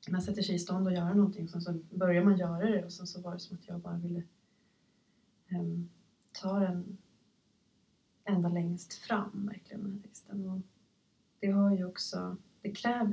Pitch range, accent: 175-205 Hz, native